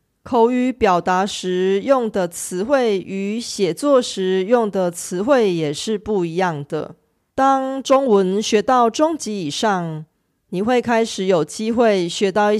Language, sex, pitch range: Korean, female, 180-245 Hz